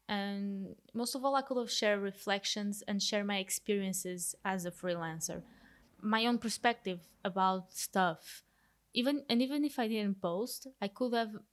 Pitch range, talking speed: 195-215 Hz, 155 wpm